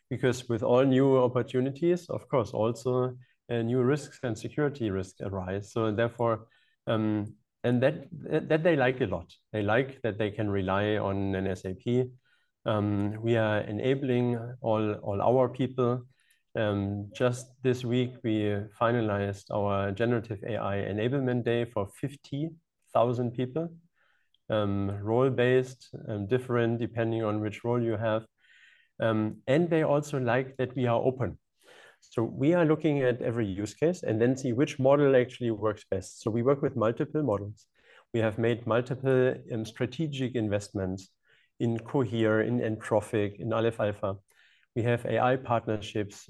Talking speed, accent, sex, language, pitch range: 150 wpm, German, male, English, 105-130 Hz